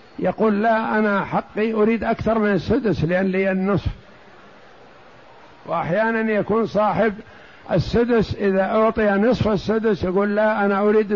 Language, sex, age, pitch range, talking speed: Arabic, male, 60-79, 180-215 Hz, 125 wpm